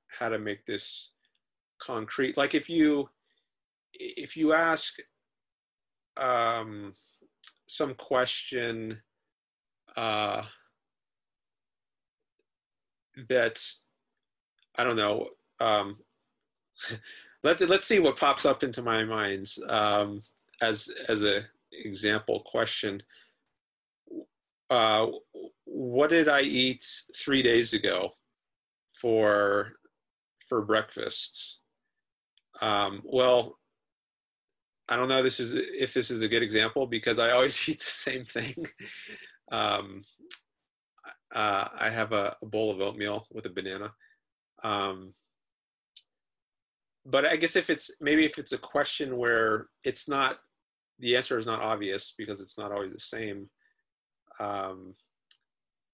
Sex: male